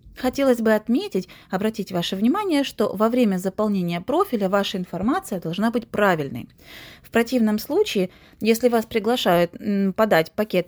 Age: 20-39